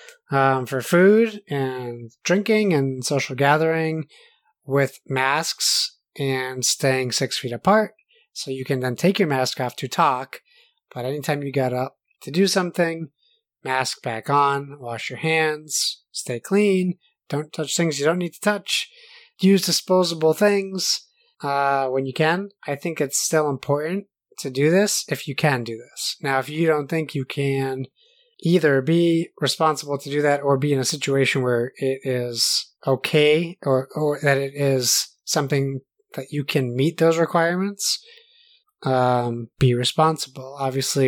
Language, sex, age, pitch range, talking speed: English, male, 30-49, 135-175 Hz, 155 wpm